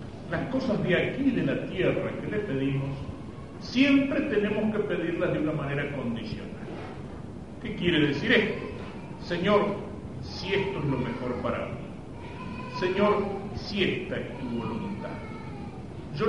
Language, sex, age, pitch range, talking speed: Spanish, male, 40-59, 125-180 Hz, 135 wpm